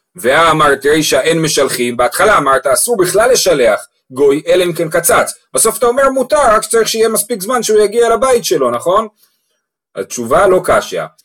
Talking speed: 160 wpm